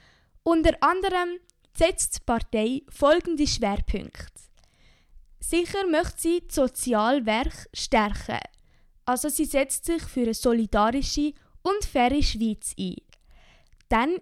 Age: 10-29